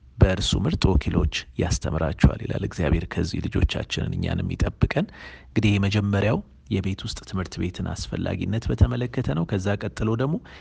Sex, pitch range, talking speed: male, 85-115 Hz, 125 wpm